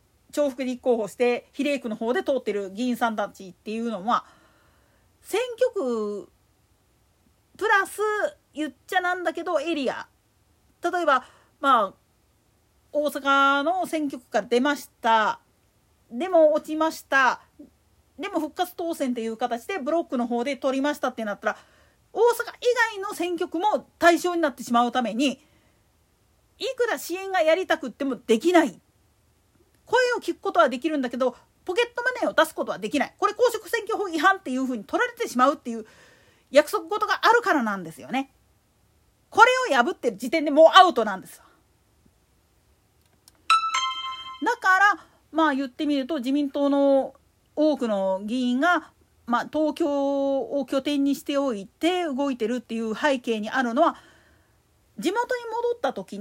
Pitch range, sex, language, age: 245-350 Hz, female, Japanese, 40-59